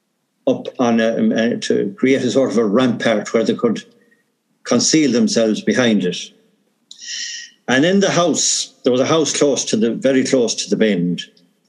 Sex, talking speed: male, 165 wpm